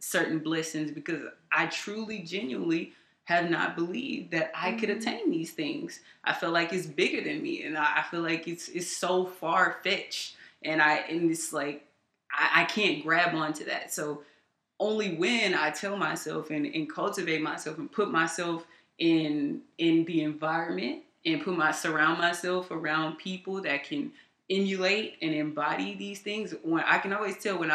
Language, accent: English, American